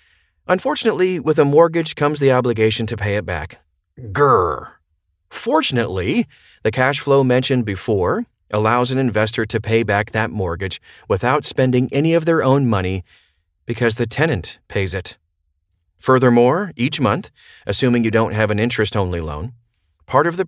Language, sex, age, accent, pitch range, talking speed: English, male, 40-59, American, 95-135 Hz, 150 wpm